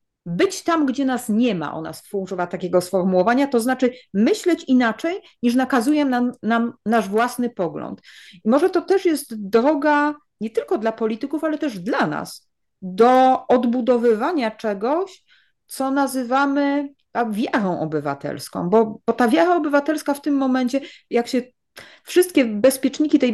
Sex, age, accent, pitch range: female, 40-59, Polish, 210-270 Hz